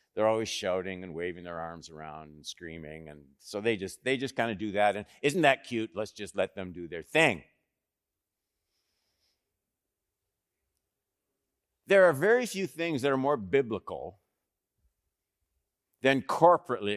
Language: English